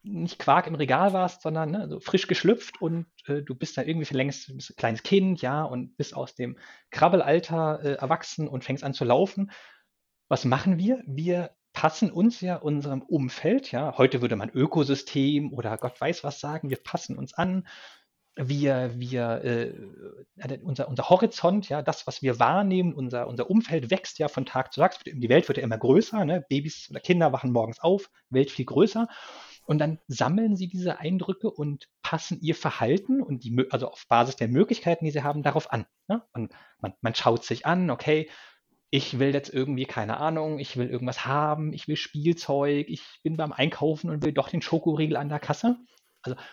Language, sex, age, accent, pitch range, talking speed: German, male, 30-49, German, 130-175 Hz, 190 wpm